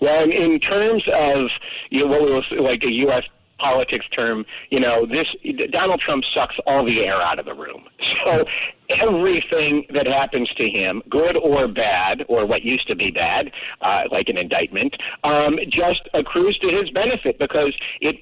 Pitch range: 150-210 Hz